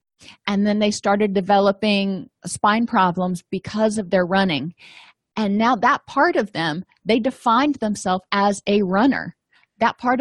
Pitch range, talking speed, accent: 190-245 Hz, 145 wpm, American